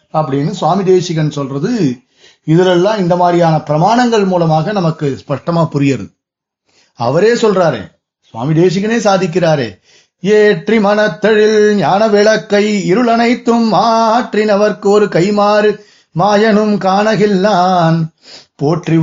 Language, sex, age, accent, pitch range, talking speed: Tamil, male, 30-49, native, 175-225 Hz, 90 wpm